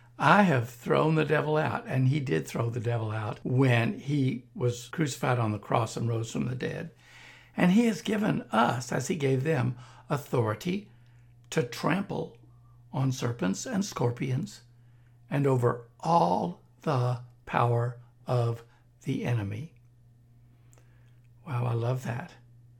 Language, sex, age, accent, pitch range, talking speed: English, male, 60-79, American, 120-150 Hz, 140 wpm